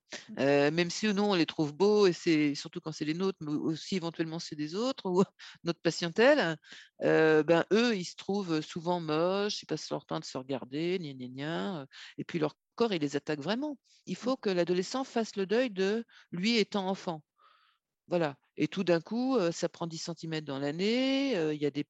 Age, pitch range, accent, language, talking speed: 50-69, 160-210 Hz, French, French, 205 wpm